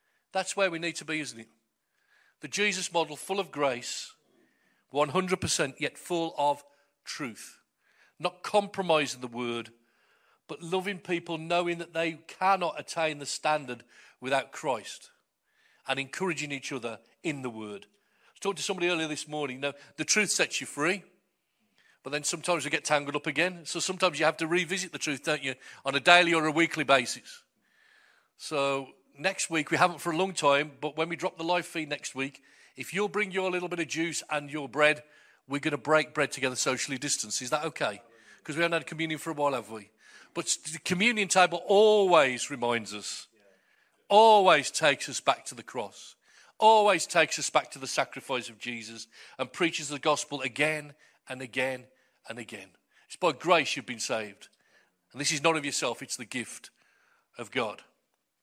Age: 40-59